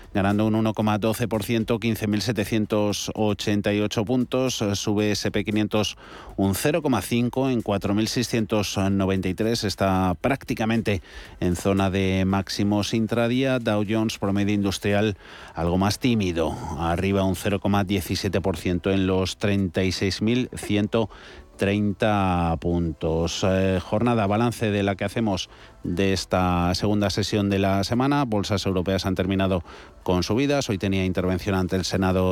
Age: 30-49